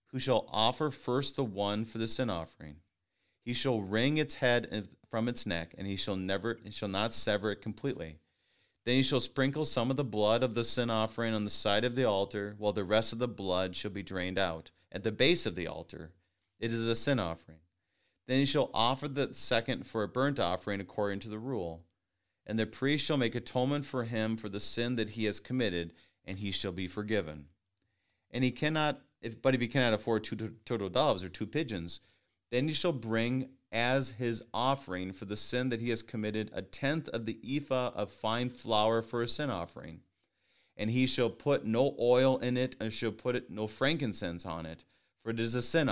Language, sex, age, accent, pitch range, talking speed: English, male, 40-59, American, 100-125 Hz, 215 wpm